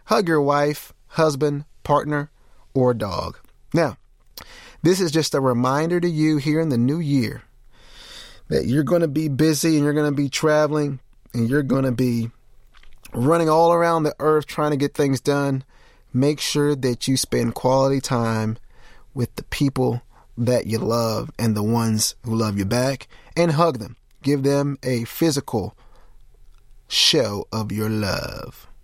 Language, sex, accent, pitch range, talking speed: English, male, American, 120-145 Hz, 160 wpm